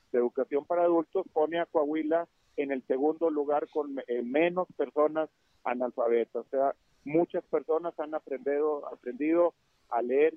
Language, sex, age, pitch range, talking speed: Spanish, male, 50-69, 135-175 Hz, 145 wpm